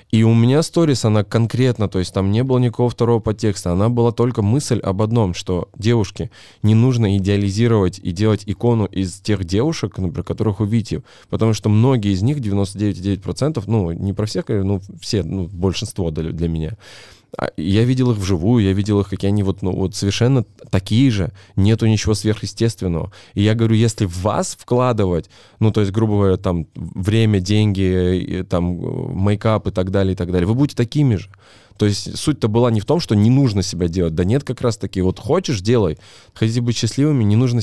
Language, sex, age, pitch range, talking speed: Russian, male, 20-39, 95-115 Hz, 190 wpm